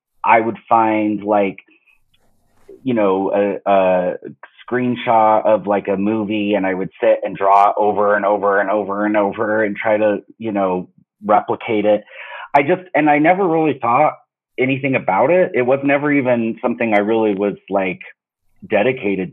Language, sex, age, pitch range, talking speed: English, male, 30-49, 100-120 Hz, 165 wpm